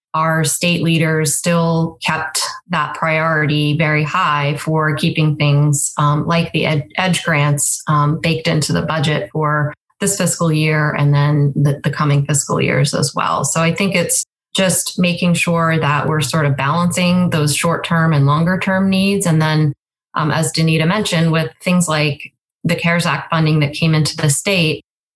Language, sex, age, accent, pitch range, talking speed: English, female, 20-39, American, 150-165 Hz, 165 wpm